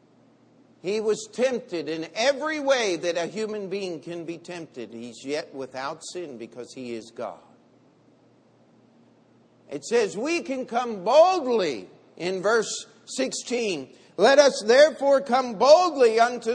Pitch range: 210-300 Hz